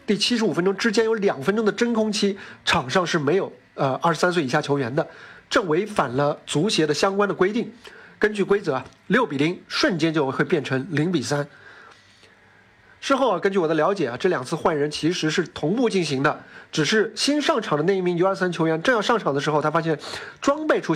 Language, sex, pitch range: Chinese, male, 150-210 Hz